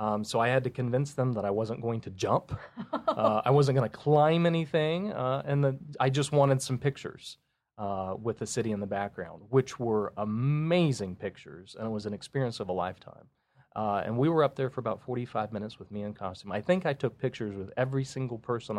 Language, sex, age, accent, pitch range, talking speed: English, male, 30-49, American, 105-140 Hz, 220 wpm